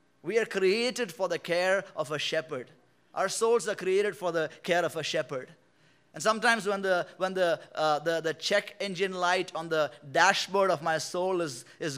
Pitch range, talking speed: 155-195 Hz, 195 wpm